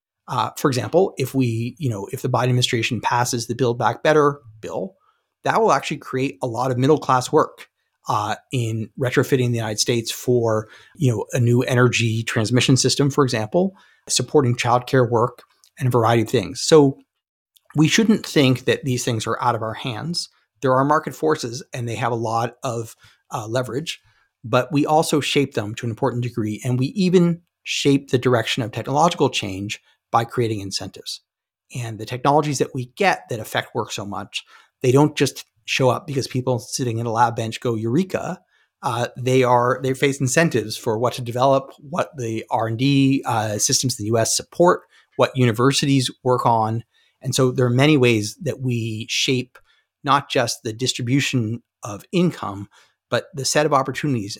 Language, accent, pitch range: English, American, 115-135 Hz